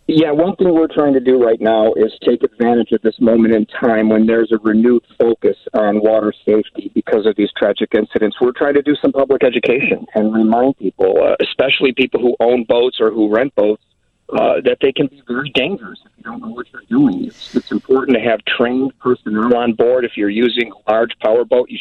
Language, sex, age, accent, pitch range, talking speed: English, male, 50-69, American, 110-145 Hz, 220 wpm